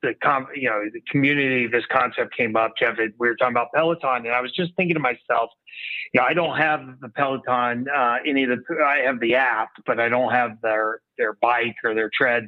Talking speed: 235 wpm